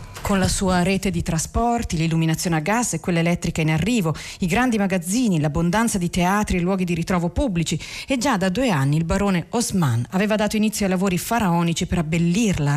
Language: Italian